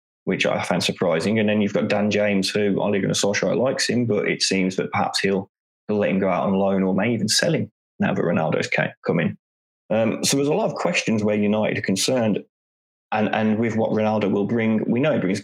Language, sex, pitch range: English, male, 95-105 Hz